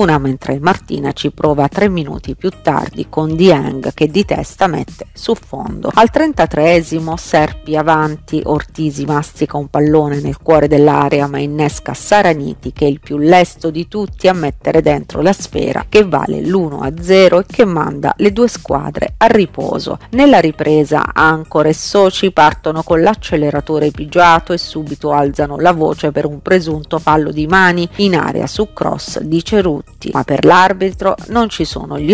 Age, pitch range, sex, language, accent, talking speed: 40-59, 150-190 Hz, female, Italian, native, 160 wpm